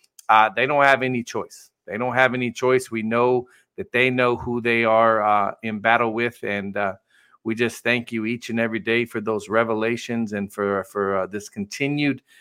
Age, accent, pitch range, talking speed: 40-59, American, 110-130 Hz, 205 wpm